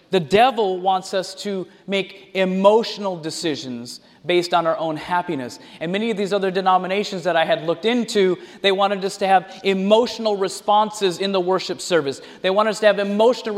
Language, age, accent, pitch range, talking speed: English, 30-49, American, 155-205 Hz, 180 wpm